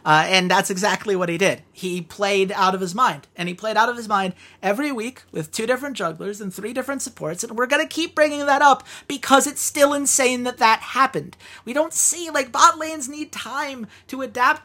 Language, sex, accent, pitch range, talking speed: English, male, American, 155-225 Hz, 225 wpm